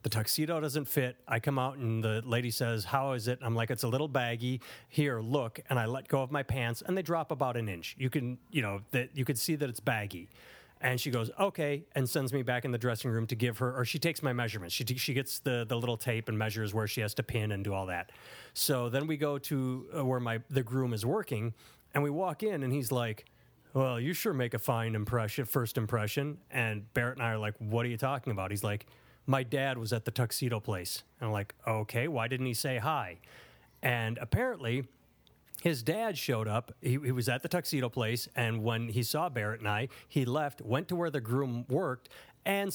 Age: 30-49